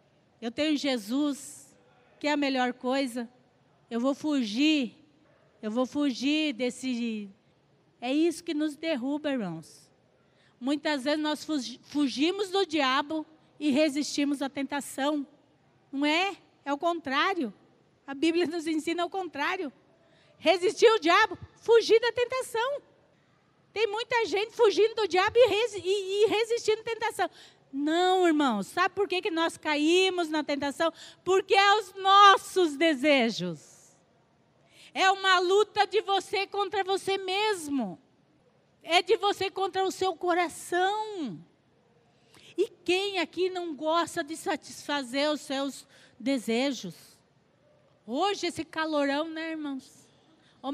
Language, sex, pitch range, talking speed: Portuguese, female, 280-385 Hz, 120 wpm